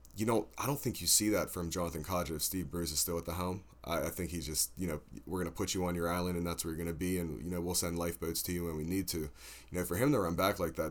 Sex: male